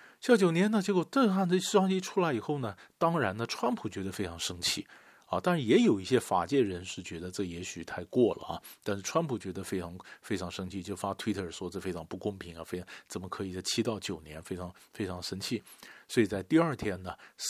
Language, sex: Chinese, male